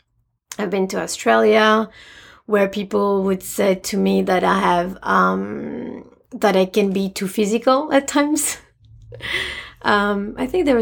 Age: 30-49